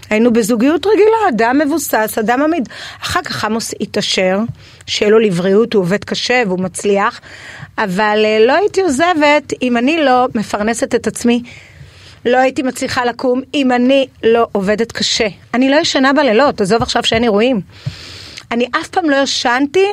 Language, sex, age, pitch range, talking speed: Hebrew, female, 30-49, 215-285 Hz, 155 wpm